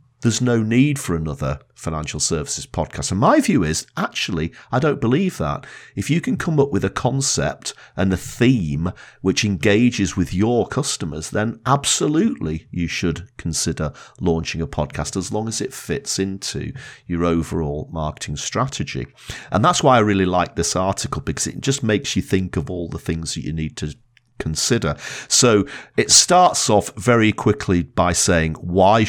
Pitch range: 85-125 Hz